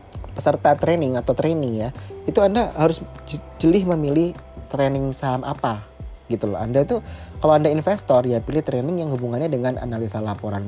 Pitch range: 115-135 Hz